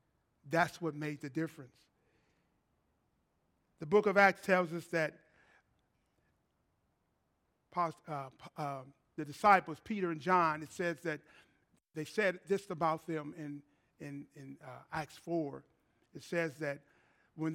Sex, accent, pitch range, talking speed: male, American, 155-210 Hz, 125 wpm